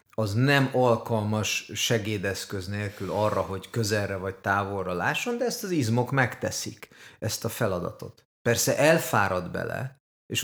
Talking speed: 130 wpm